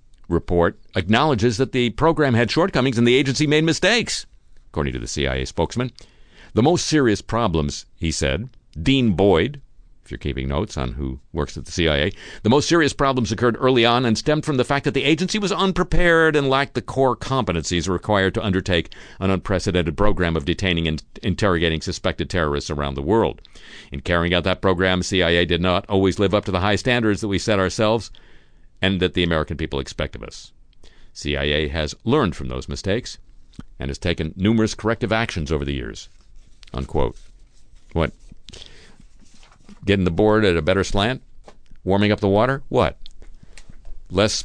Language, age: English, 50-69